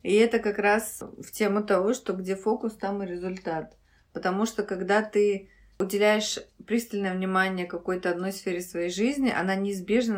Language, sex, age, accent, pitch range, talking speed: Russian, female, 20-39, native, 180-220 Hz, 160 wpm